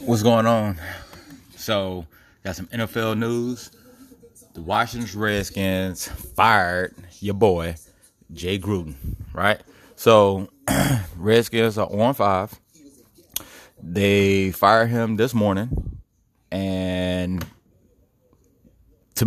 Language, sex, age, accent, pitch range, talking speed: English, male, 30-49, American, 90-110 Hz, 85 wpm